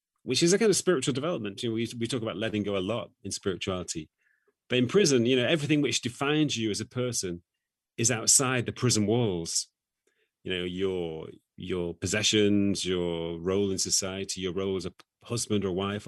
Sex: male